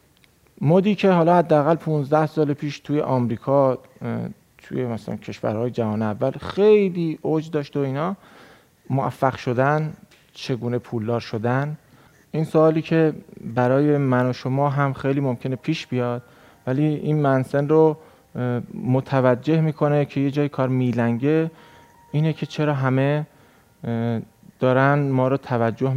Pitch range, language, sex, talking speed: 120-150 Hz, Persian, male, 125 wpm